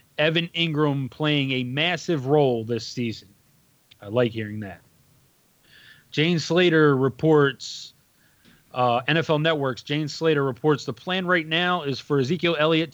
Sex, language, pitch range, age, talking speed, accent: male, English, 125-160 Hz, 20-39, 135 wpm, American